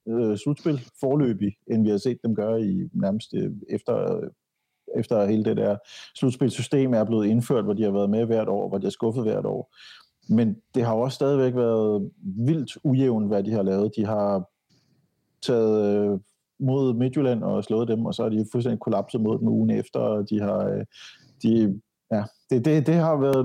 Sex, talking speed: male, 195 wpm